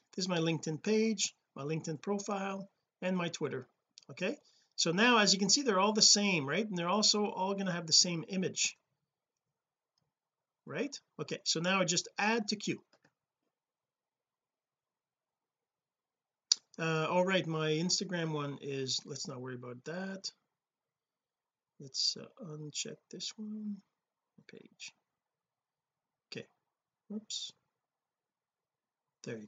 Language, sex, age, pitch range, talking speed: English, male, 40-59, 155-200 Hz, 130 wpm